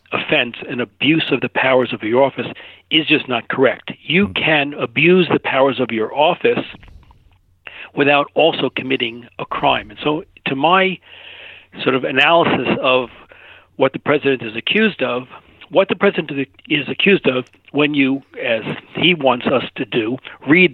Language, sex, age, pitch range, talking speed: English, male, 60-79, 125-155 Hz, 160 wpm